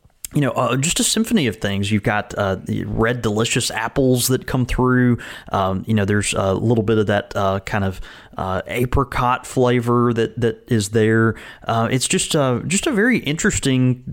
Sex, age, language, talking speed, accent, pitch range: male, 30-49, English, 190 wpm, American, 100-125 Hz